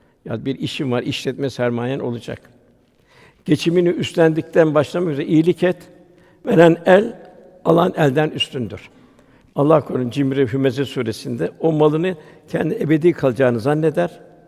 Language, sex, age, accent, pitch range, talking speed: Turkish, male, 60-79, native, 130-160 Hz, 120 wpm